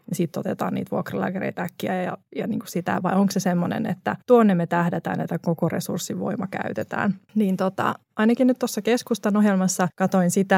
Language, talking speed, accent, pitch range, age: Finnish, 175 wpm, native, 175-205 Hz, 20-39